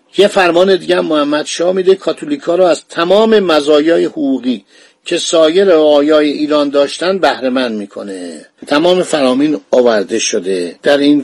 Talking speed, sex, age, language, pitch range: 140 wpm, male, 50-69, Persian, 140-180 Hz